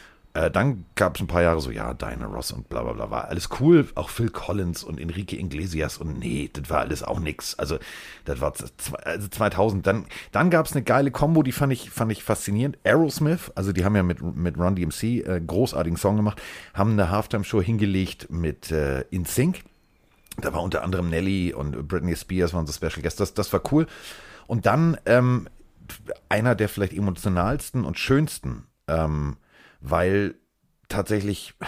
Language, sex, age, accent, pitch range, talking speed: German, male, 40-59, German, 80-110 Hz, 185 wpm